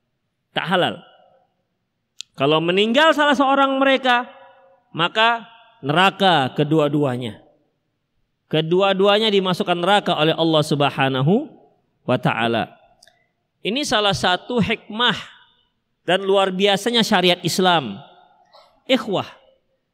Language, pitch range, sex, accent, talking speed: Indonesian, 195-305 Hz, male, native, 80 wpm